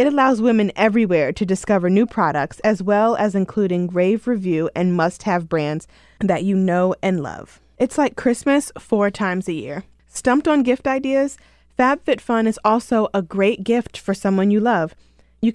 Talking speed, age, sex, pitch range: 170 wpm, 20-39, female, 175-225 Hz